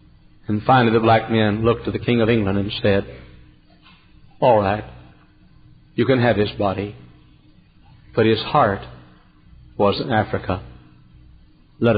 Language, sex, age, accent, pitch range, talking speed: English, male, 60-79, American, 80-120 Hz, 135 wpm